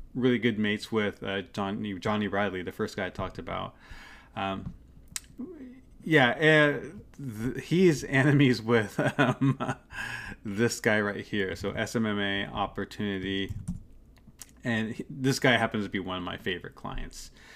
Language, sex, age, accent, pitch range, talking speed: English, male, 30-49, American, 100-130 Hz, 135 wpm